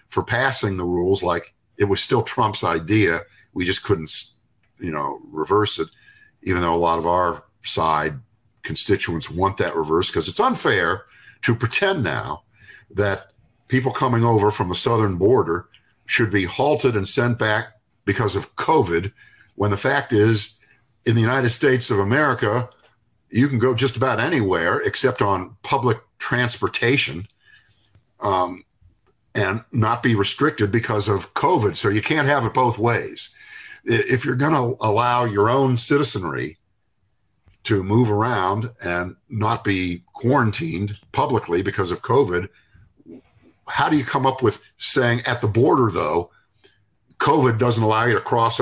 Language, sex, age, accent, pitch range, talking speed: English, male, 50-69, American, 100-125 Hz, 150 wpm